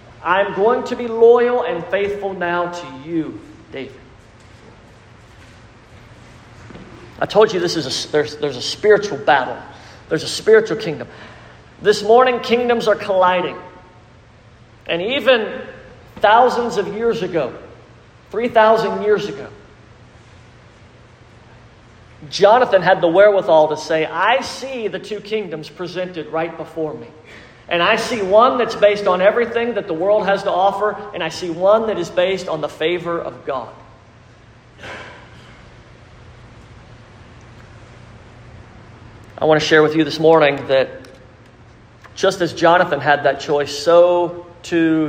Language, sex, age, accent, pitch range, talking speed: English, male, 40-59, American, 120-185 Hz, 130 wpm